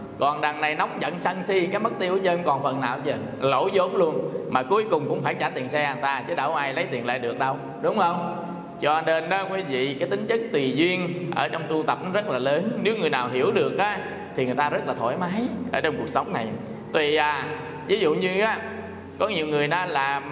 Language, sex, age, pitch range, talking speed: Vietnamese, male, 20-39, 140-195 Hz, 255 wpm